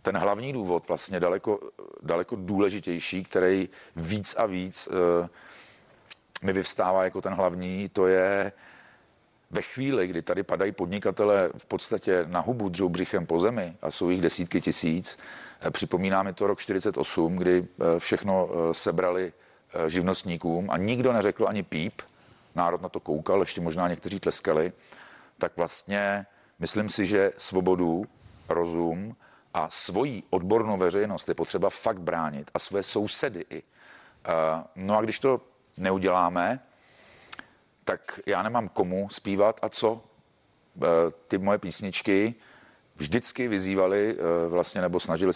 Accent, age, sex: native, 40-59, male